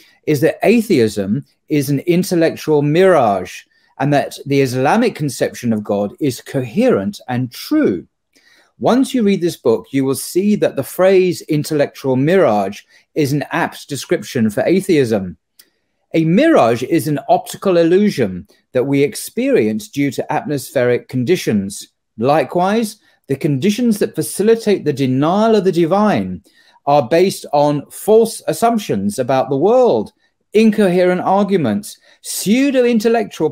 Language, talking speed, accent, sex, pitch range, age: English, 125 wpm, British, male, 135-205 Hz, 40-59